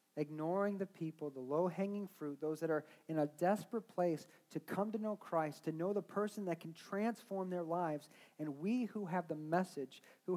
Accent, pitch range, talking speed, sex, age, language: American, 155-200 Hz, 195 wpm, male, 40-59, English